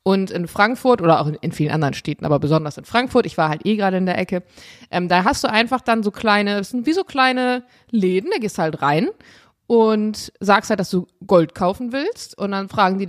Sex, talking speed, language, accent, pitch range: female, 240 wpm, German, German, 180-230 Hz